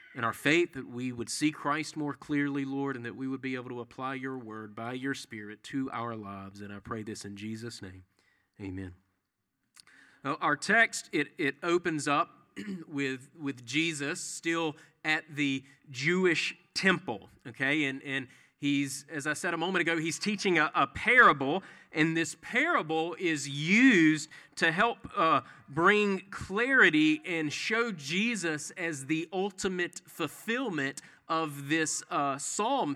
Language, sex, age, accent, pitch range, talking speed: English, male, 30-49, American, 135-175 Hz, 155 wpm